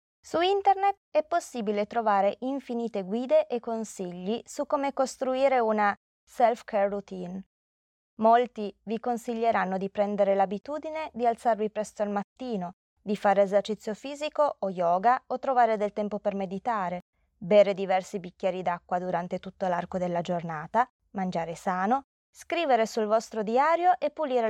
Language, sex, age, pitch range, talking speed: Italian, female, 20-39, 190-245 Hz, 135 wpm